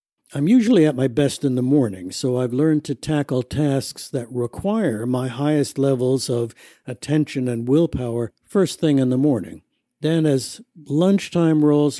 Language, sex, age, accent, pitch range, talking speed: English, male, 60-79, American, 125-150 Hz, 160 wpm